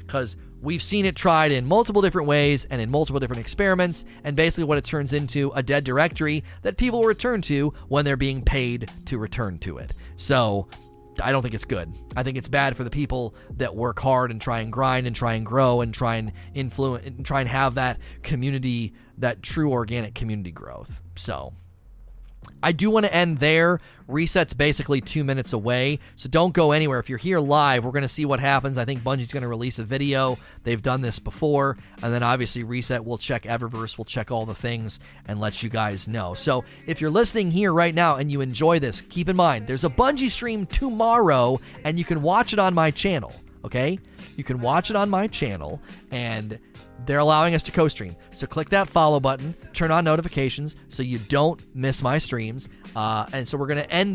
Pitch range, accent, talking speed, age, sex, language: 120-155 Hz, American, 210 wpm, 30-49, male, English